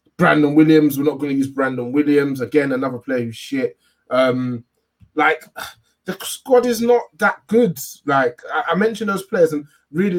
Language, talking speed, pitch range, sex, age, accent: English, 170 wpm, 130-175 Hz, male, 20-39, British